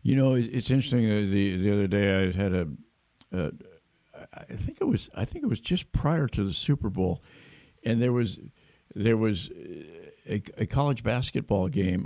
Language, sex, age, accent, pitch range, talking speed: English, male, 60-79, American, 105-135 Hz, 180 wpm